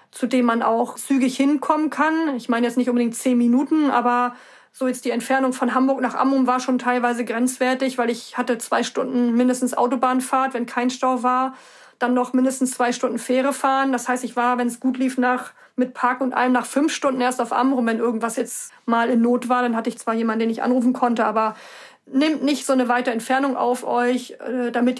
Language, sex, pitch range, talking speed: German, female, 240-260 Hz, 215 wpm